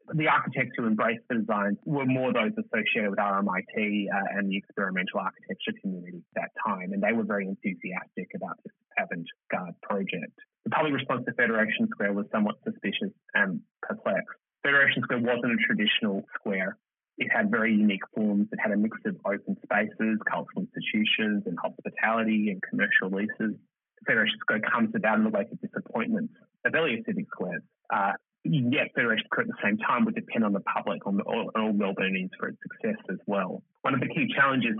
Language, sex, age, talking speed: English, male, 30-49, 190 wpm